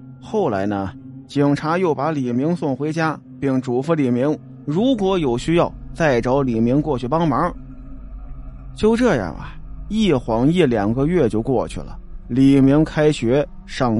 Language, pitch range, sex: Chinese, 110-160 Hz, male